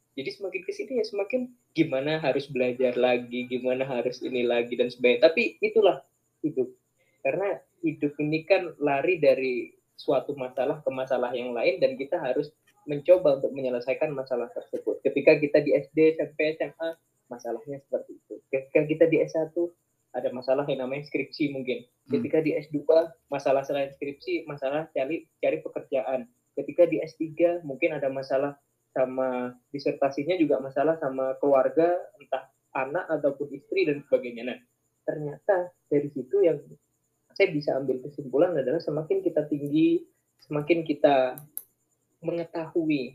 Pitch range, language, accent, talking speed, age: 130-175 Hz, Indonesian, native, 140 wpm, 20-39